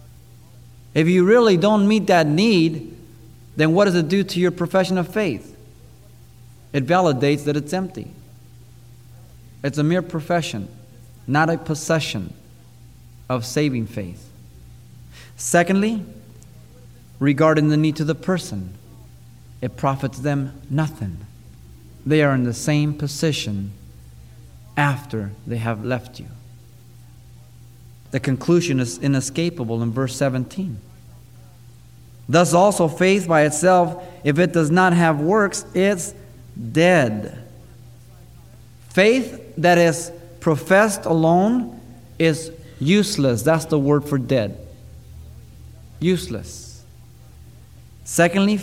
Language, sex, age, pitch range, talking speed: English, male, 30-49, 115-170 Hz, 110 wpm